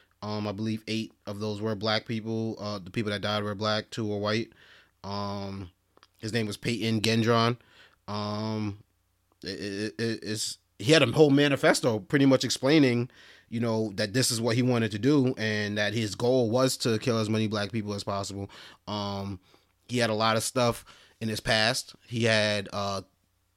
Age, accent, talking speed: 30-49, American, 185 wpm